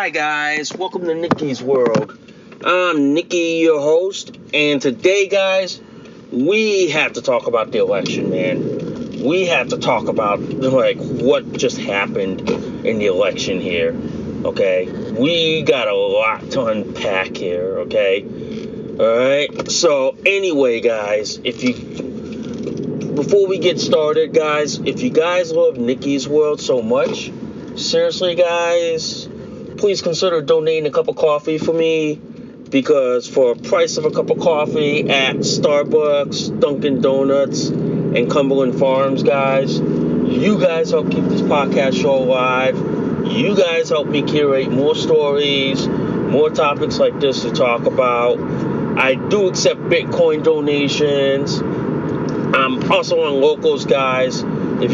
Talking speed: 135 wpm